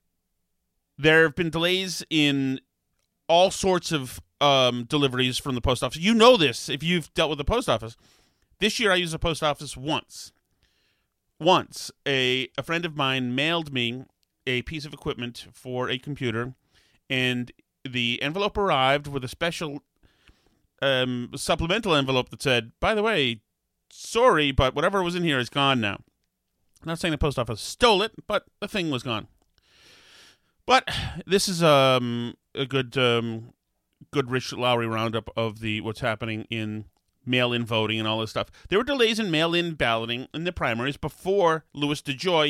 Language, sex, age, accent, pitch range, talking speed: English, male, 30-49, American, 120-165 Hz, 170 wpm